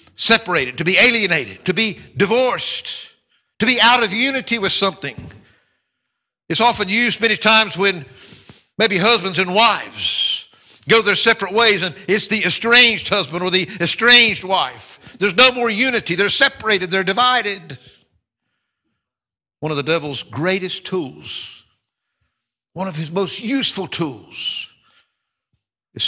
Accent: American